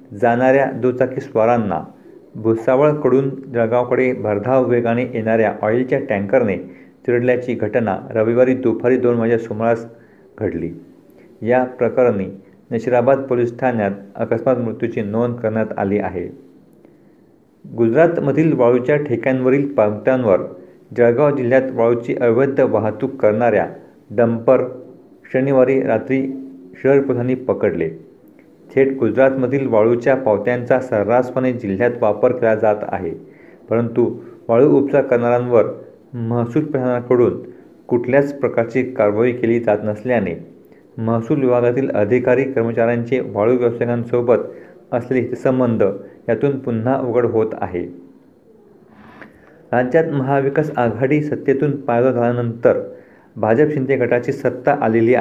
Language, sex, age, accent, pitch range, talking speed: Marathi, male, 50-69, native, 115-130 Hz, 100 wpm